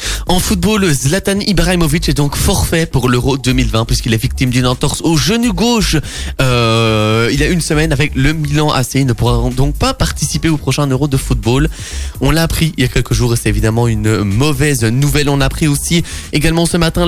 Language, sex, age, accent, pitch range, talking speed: French, male, 20-39, French, 125-170 Hz, 210 wpm